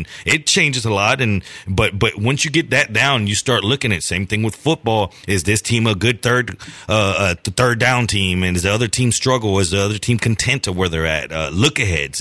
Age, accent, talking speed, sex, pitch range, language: 30-49, American, 240 wpm, male, 100-125 Hz, English